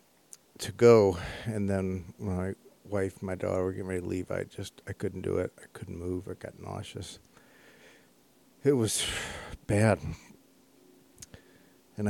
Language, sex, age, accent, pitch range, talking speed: English, male, 50-69, American, 90-105 Hz, 150 wpm